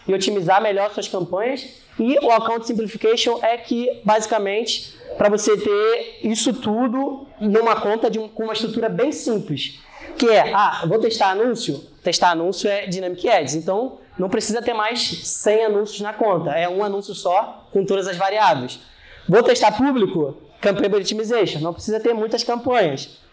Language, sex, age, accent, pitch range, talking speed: Portuguese, male, 20-39, Brazilian, 195-245 Hz, 165 wpm